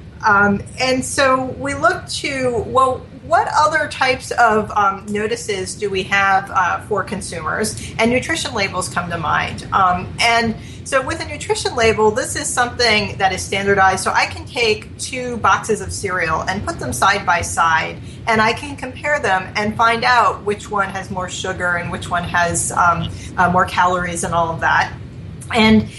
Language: English